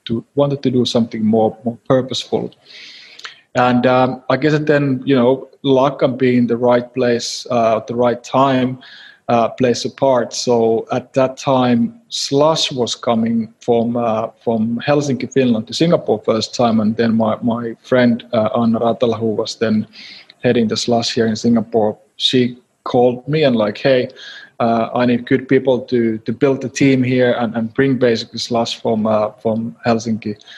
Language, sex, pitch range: English, male, 115-130 Hz